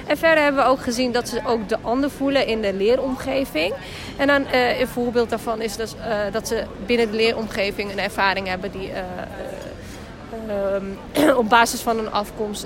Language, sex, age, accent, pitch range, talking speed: Dutch, female, 20-39, Dutch, 200-245 Hz, 180 wpm